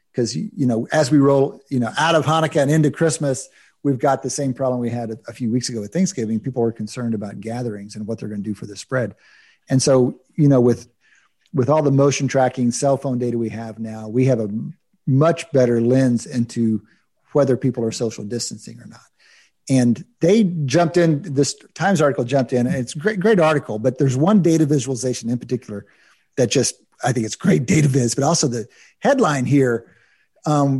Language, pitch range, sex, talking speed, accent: English, 125-165 Hz, male, 210 wpm, American